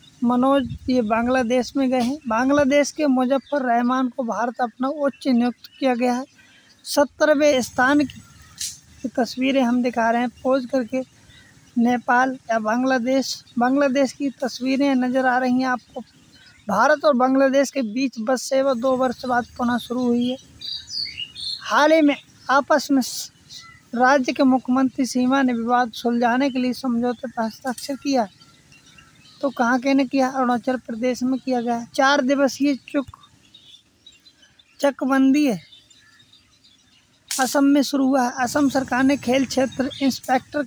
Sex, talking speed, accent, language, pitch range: female, 105 wpm, Indian, English, 245-270 Hz